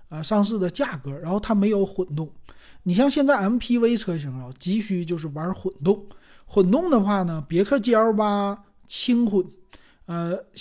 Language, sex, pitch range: Chinese, male, 155-215 Hz